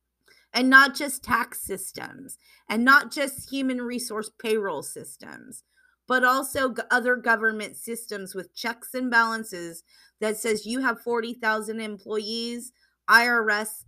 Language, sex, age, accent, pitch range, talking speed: English, female, 20-39, American, 175-230 Hz, 120 wpm